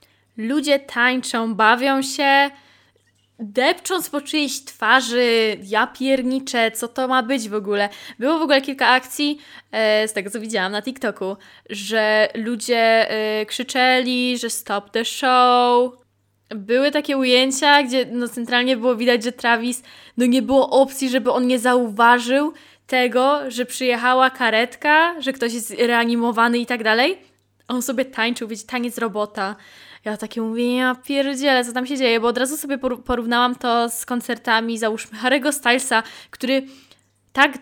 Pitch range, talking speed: 225-260 Hz, 150 wpm